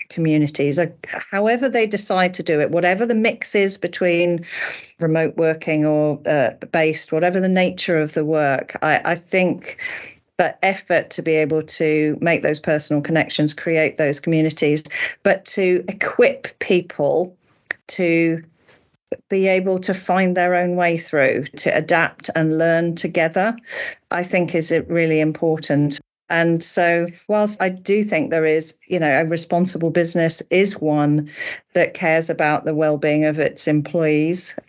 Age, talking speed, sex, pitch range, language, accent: 40-59, 150 wpm, female, 155-180 Hz, English, British